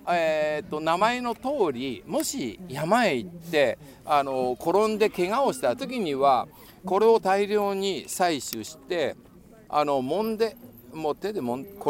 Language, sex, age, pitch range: Japanese, male, 60-79, 130-195 Hz